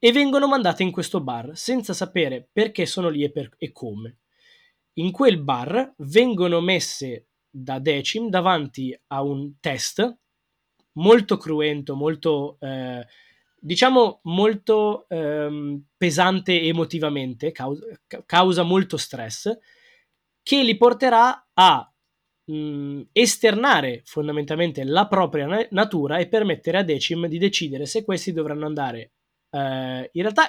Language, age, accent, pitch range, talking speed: Italian, 20-39, native, 145-195 Hz, 115 wpm